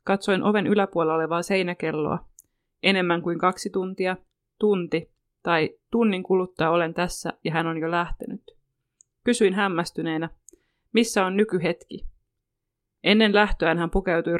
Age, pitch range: 30-49, 170-200 Hz